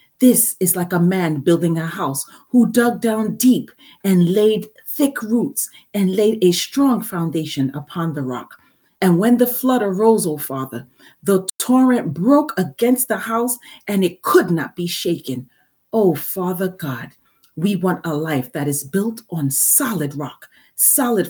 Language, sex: English, female